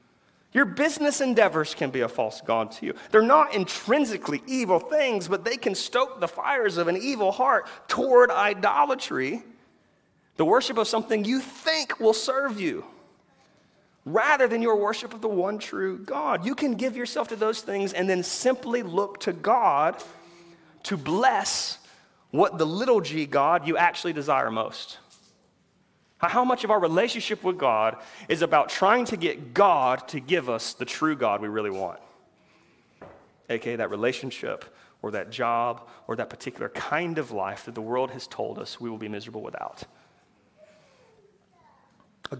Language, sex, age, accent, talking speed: English, male, 30-49, American, 165 wpm